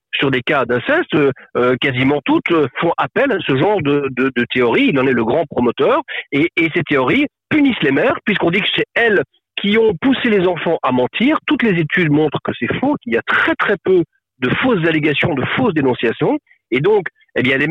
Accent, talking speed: French, 220 wpm